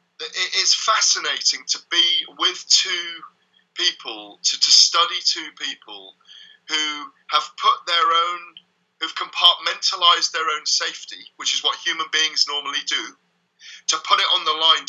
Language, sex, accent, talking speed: English, male, British, 140 wpm